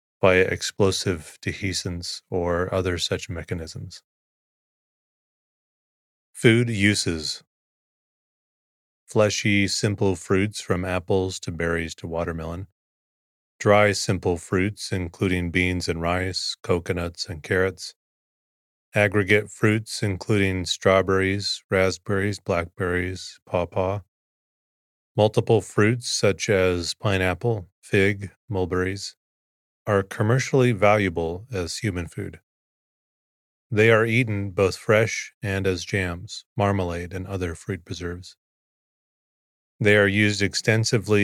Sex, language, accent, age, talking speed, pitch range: male, English, American, 30-49, 95 wpm, 85-100 Hz